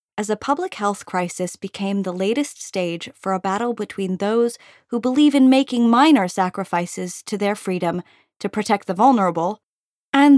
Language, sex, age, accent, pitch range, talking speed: English, female, 20-39, American, 195-250 Hz, 160 wpm